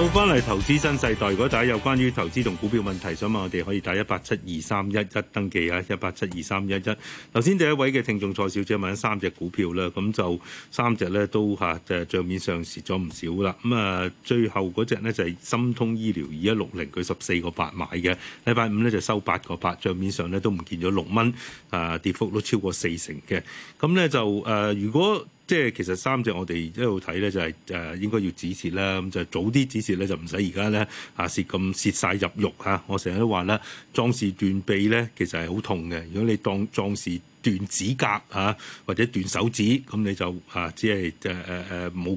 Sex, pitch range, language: male, 90-115 Hz, Chinese